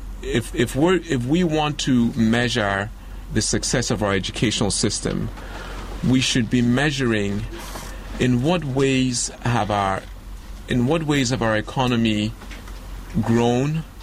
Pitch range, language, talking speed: 100-125 Hz, English, 130 wpm